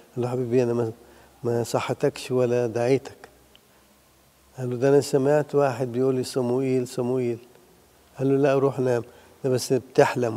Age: 50-69